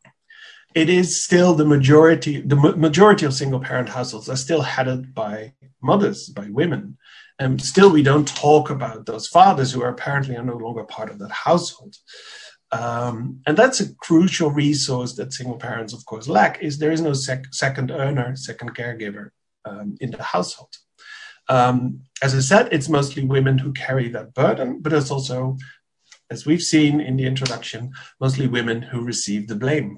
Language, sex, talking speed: English, male, 170 wpm